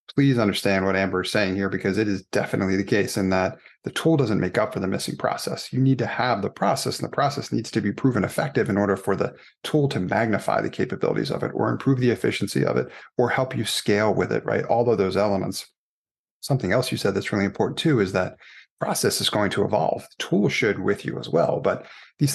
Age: 30-49